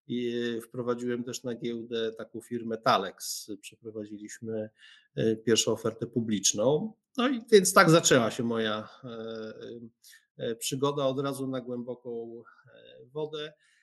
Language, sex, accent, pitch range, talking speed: Polish, male, native, 110-130 Hz, 110 wpm